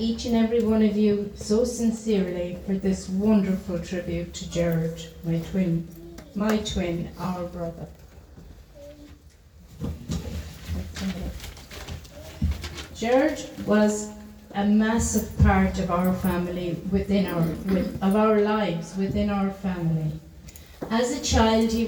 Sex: female